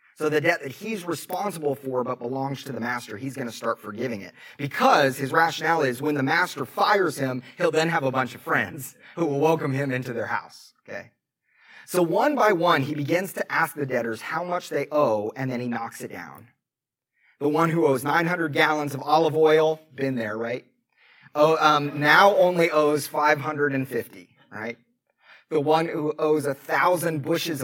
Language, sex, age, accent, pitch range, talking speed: English, male, 30-49, American, 125-160 Hz, 190 wpm